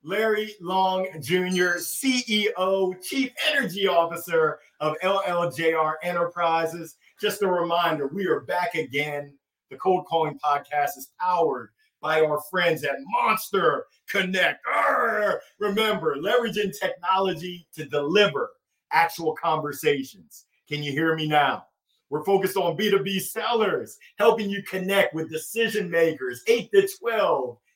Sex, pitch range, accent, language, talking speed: male, 160-215 Hz, American, English, 120 wpm